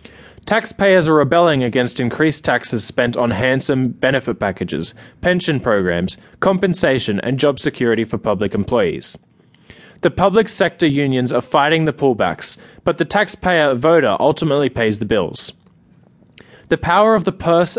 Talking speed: 140 wpm